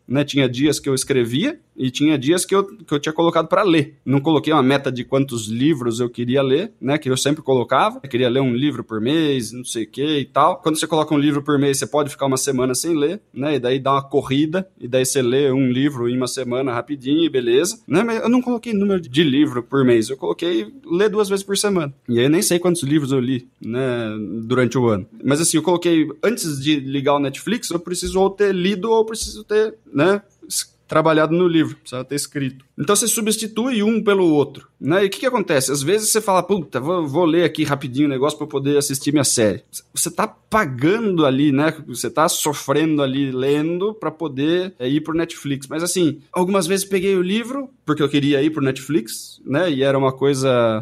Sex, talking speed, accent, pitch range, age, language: male, 235 wpm, Brazilian, 135-180 Hz, 20-39, Portuguese